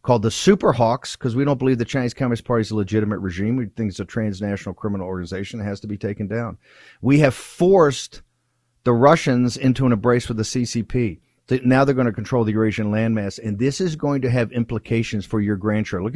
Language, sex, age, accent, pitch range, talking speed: English, male, 50-69, American, 100-125 Hz, 220 wpm